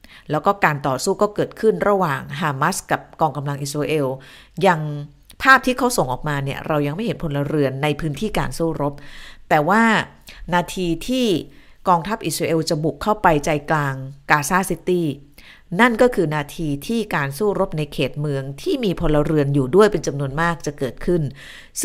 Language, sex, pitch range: Thai, female, 140-185 Hz